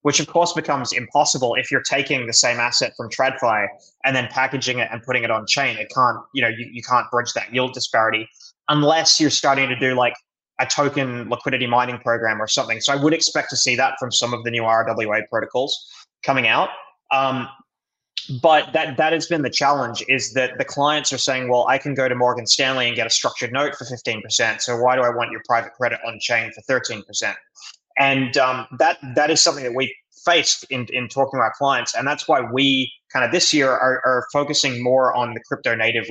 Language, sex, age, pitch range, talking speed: English, male, 20-39, 120-140 Hz, 220 wpm